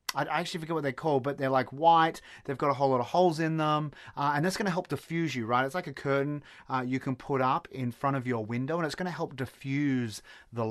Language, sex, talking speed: English, male, 275 wpm